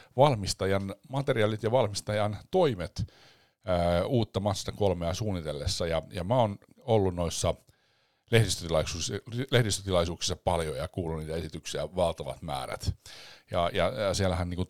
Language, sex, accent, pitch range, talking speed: Finnish, male, native, 80-105 Hz, 125 wpm